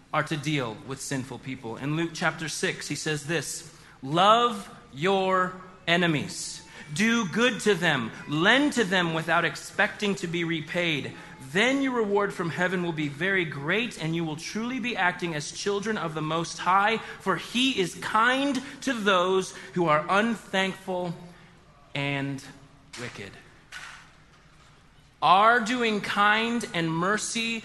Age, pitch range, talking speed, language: 30-49, 160-220 Hz, 140 wpm, English